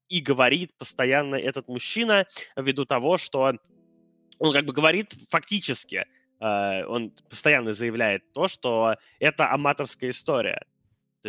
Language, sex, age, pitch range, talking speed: Russian, male, 20-39, 115-165 Hz, 120 wpm